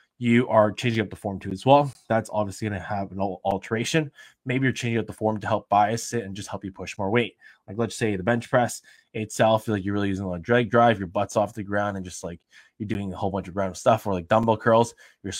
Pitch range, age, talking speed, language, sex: 105-130 Hz, 20-39, 275 wpm, English, male